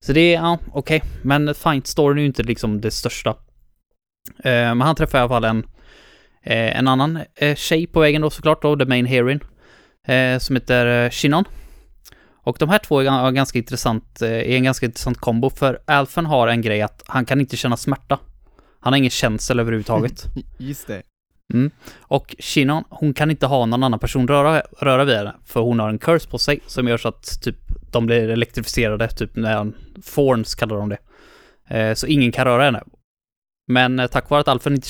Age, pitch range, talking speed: 20-39, 115-140 Hz, 210 wpm